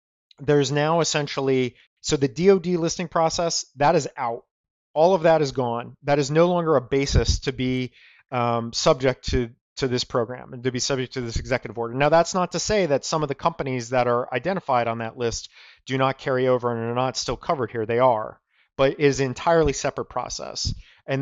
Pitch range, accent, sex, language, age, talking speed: 125-150 Hz, American, male, English, 30-49, 205 wpm